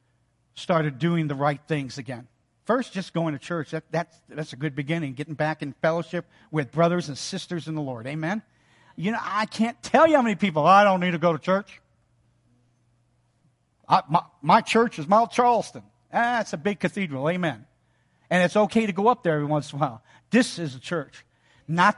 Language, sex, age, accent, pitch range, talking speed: English, male, 50-69, American, 130-195 Hz, 205 wpm